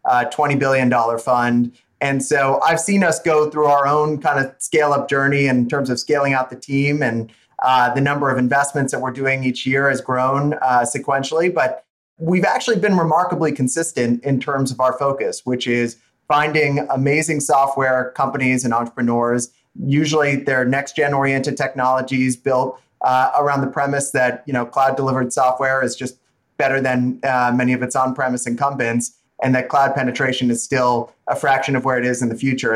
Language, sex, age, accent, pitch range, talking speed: English, male, 30-49, American, 125-150 Hz, 190 wpm